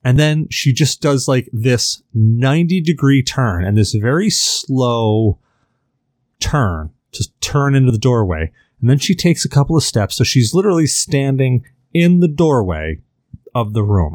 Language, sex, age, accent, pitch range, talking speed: English, male, 30-49, American, 110-140 Hz, 160 wpm